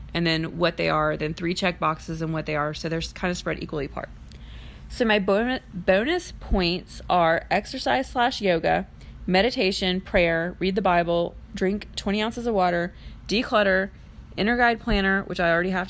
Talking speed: 175 wpm